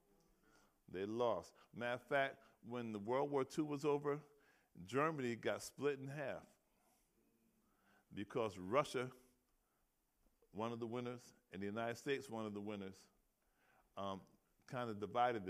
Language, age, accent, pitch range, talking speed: English, 50-69, American, 105-140 Hz, 135 wpm